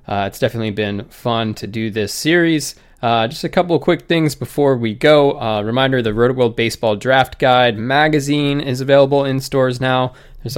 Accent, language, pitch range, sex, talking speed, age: American, English, 110-135 Hz, male, 195 wpm, 20-39